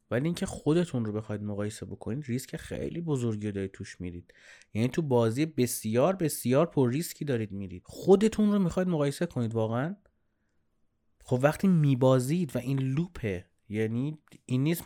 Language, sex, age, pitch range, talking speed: Persian, male, 30-49, 115-165 Hz, 155 wpm